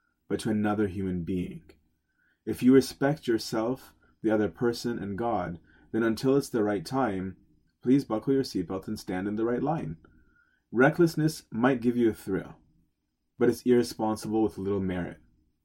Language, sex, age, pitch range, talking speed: English, male, 30-49, 95-125 Hz, 160 wpm